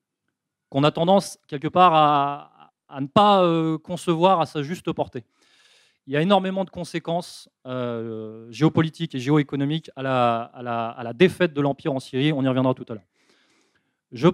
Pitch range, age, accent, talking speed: 140-185 Hz, 30-49, French, 165 wpm